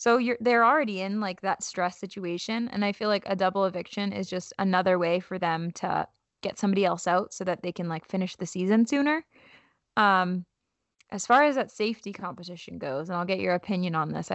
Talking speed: 210 wpm